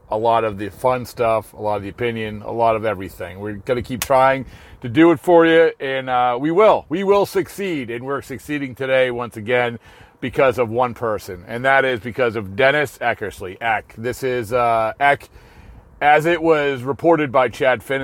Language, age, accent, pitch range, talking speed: English, 40-59, American, 115-145 Hz, 205 wpm